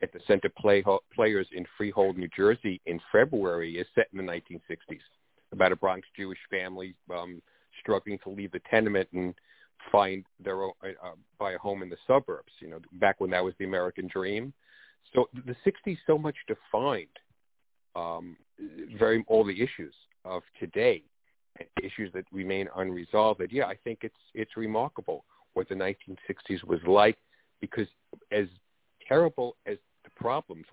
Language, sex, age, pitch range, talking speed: English, male, 50-69, 95-130 Hz, 155 wpm